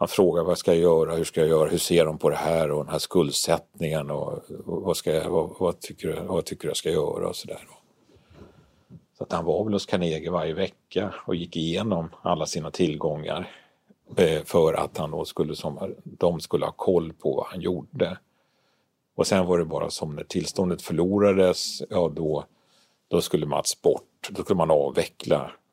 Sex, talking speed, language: male, 190 wpm, Swedish